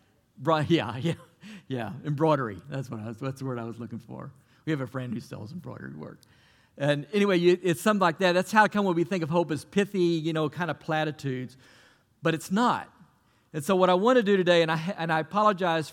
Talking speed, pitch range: 235 wpm, 130-175 Hz